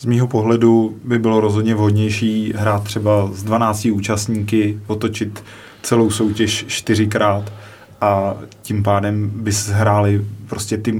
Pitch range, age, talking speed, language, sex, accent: 105-110 Hz, 20-39, 120 wpm, Czech, male, native